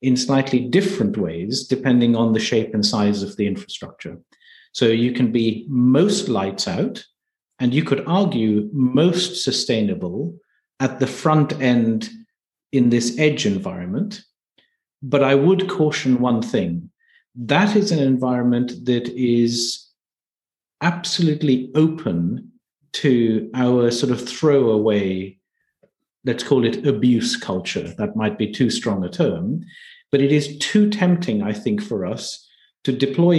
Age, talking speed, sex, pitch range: 50-69, 135 wpm, male, 120-155 Hz